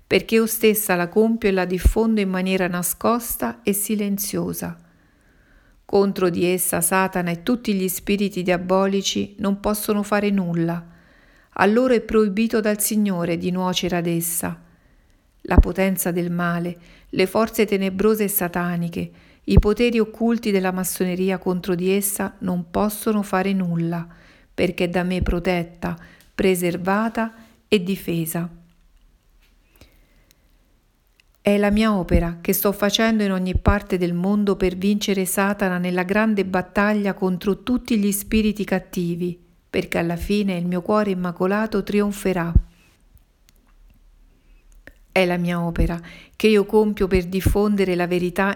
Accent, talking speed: native, 130 wpm